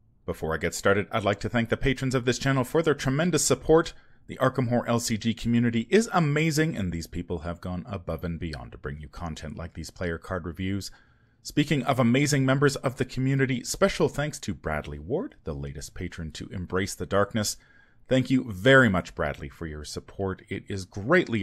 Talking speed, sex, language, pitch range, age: 200 wpm, male, English, 90-135 Hz, 30-49